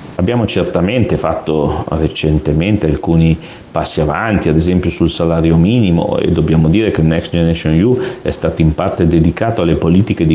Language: Italian